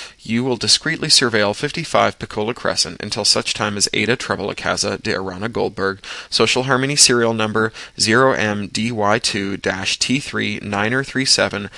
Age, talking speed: 20-39, 125 wpm